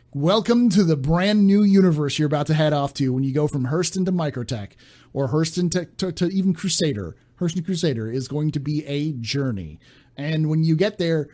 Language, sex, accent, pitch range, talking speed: English, male, American, 120-165 Hz, 205 wpm